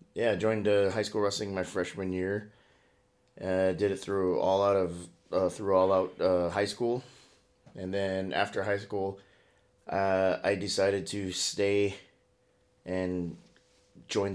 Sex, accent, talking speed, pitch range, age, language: male, American, 150 wpm, 90-105 Hz, 30-49, English